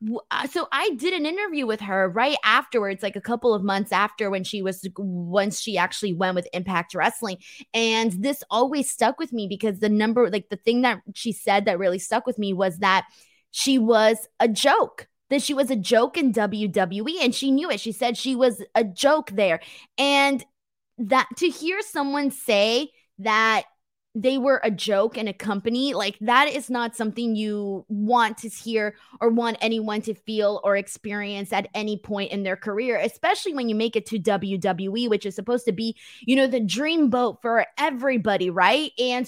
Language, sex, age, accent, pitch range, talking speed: English, female, 20-39, American, 210-265 Hz, 190 wpm